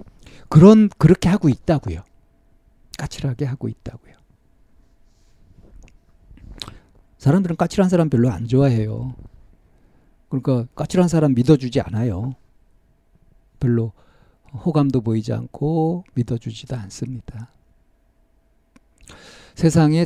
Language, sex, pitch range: Korean, male, 115-160 Hz